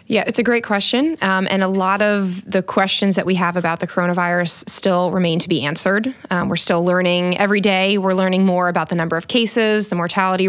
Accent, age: American, 20-39